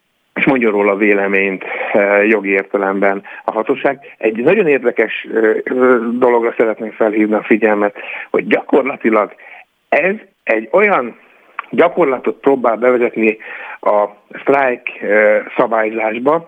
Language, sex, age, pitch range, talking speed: Hungarian, male, 60-79, 110-140 Hz, 100 wpm